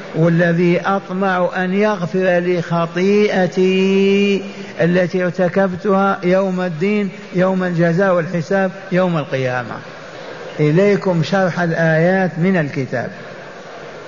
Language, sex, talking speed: Arabic, male, 85 wpm